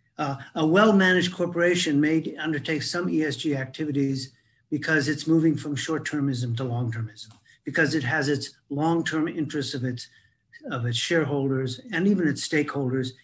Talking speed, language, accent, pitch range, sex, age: 140 wpm, English, American, 125-155 Hz, male, 50-69